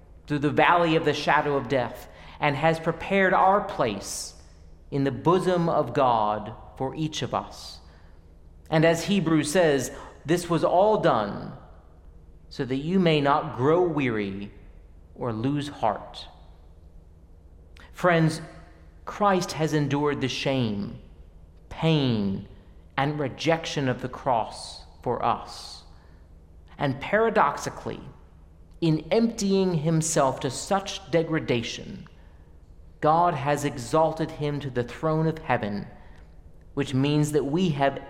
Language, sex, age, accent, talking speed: English, male, 40-59, American, 120 wpm